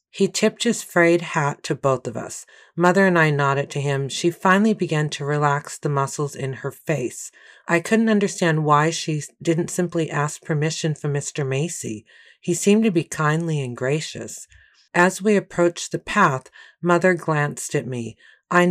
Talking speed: 175 wpm